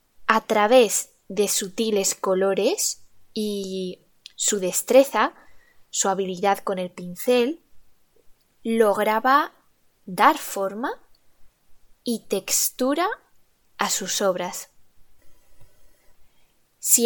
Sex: female